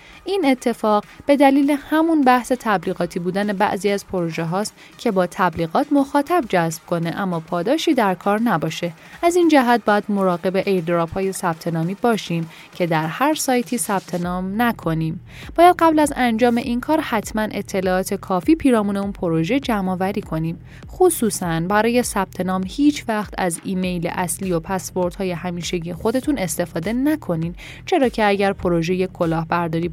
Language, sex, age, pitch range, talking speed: Persian, female, 10-29, 175-245 Hz, 150 wpm